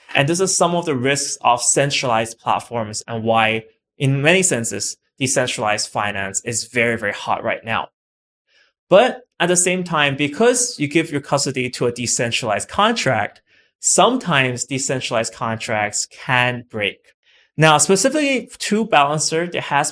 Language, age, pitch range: English, 20-39, 115-155 Hz